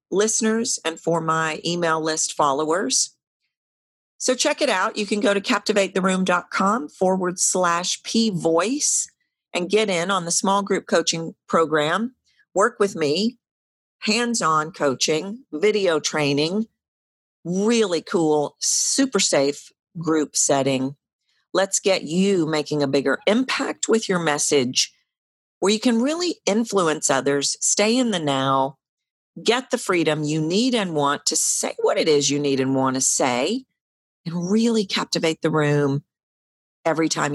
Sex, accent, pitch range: female, American, 145-215 Hz